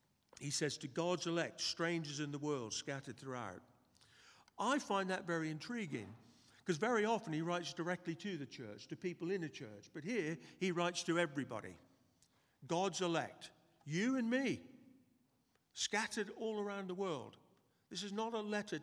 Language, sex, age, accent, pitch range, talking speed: English, male, 50-69, British, 155-190 Hz, 165 wpm